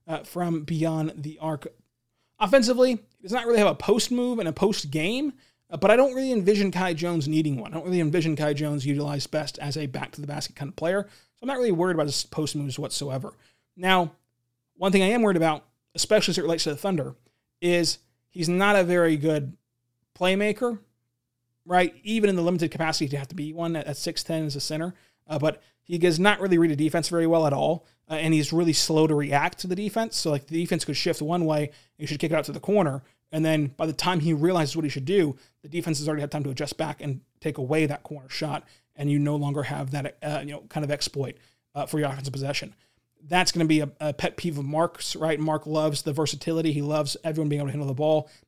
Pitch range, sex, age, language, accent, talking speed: 145-175 Hz, male, 20-39, English, American, 245 wpm